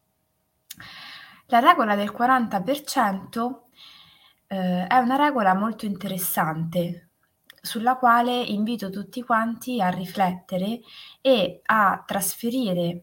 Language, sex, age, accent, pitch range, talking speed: Italian, female, 20-39, native, 185-245 Hz, 90 wpm